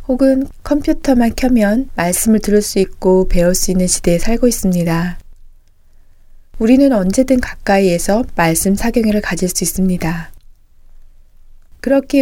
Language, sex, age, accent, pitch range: Korean, female, 20-39, native, 170-220 Hz